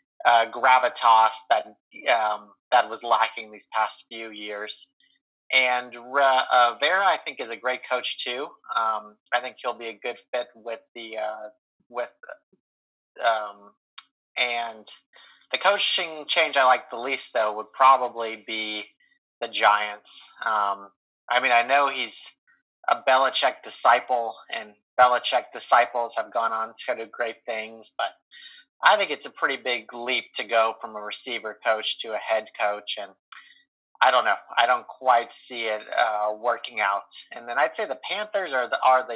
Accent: American